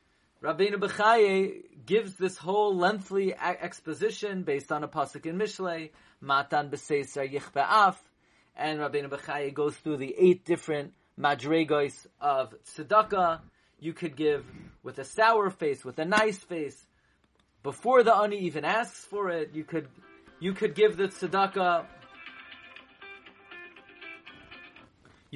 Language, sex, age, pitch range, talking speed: English, male, 30-49, 155-200 Hz, 120 wpm